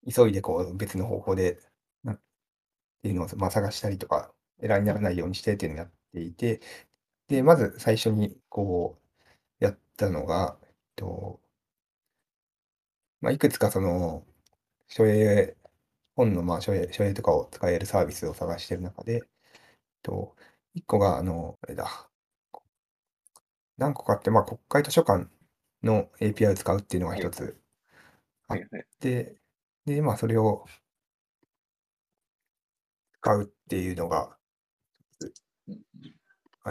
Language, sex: Japanese, male